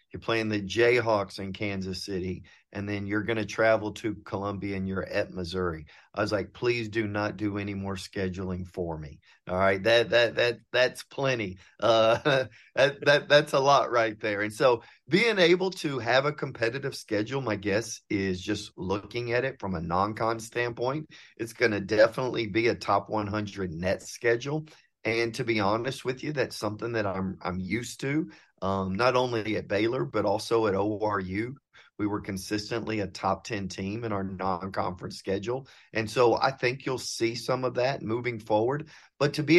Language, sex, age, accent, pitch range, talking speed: English, male, 40-59, American, 100-125 Hz, 185 wpm